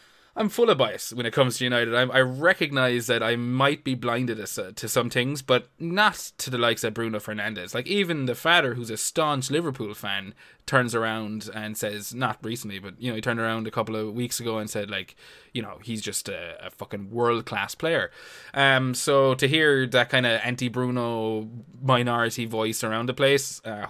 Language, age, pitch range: English, 20-39, 115-135 Hz